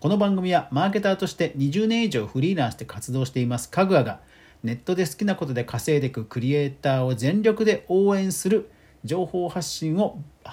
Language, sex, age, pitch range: Japanese, male, 40-59, 120-185 Hz